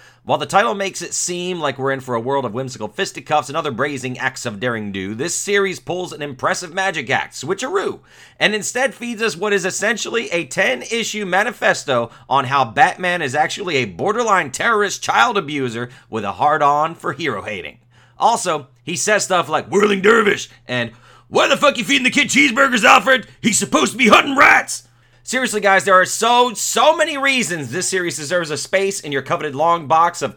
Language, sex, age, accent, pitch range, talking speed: English, male, 30-49, American, 130-210 Hz, 195 wpm